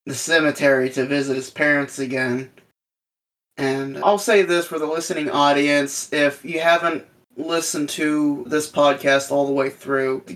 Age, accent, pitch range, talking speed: 20-39, American, 135-155 Hz, 155 wpm